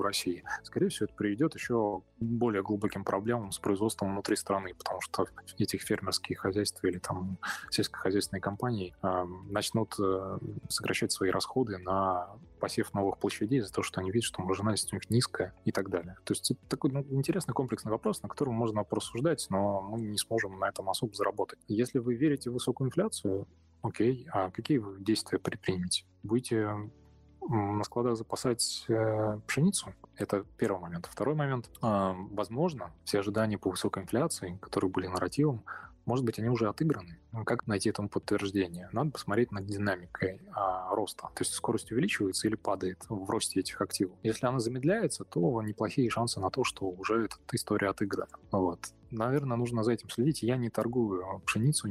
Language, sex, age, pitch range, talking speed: Russian, male, 20-39, 95-120 Hz, 170 wpm